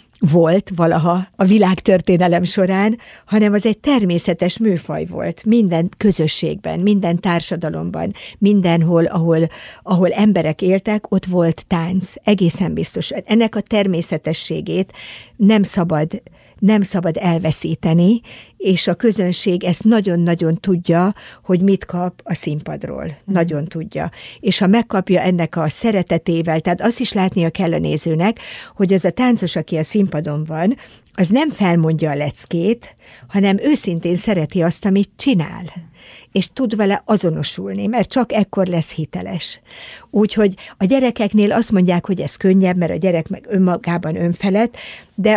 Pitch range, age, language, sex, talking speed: 170-210 Hz, 60-79, Hungarian, female, 135 wpm